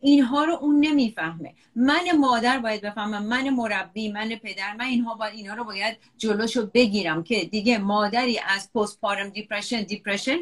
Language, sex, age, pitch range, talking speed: Persian, female, 40-59, 205-270 Hz, 160 wpm